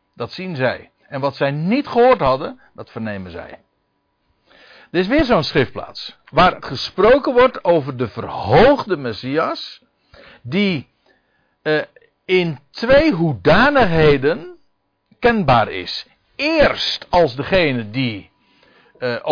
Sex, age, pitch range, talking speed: male, 60-79, 115-185 Hz, 110 wpm